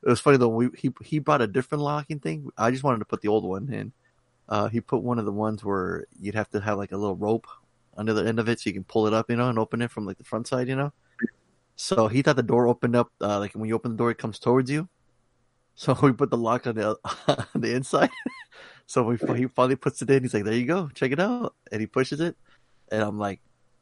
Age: 20-39